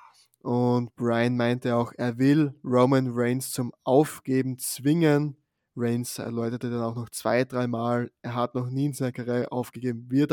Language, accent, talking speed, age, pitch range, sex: German, German, 150 wpm, 20-39, 120-135 Hz, male